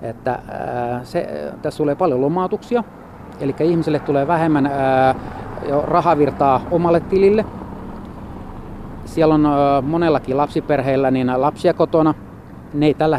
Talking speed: 105 wpm